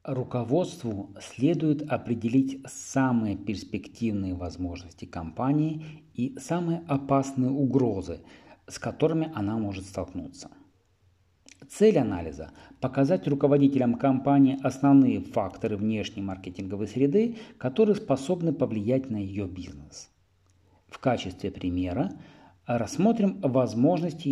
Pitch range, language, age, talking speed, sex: 95-140 Hz, Russian, 50-69, 90 wpm, male